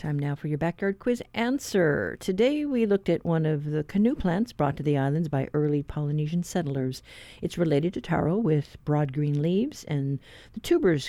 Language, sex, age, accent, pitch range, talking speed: English, female, 50-69, American, 150-185 Hz, 190 wpm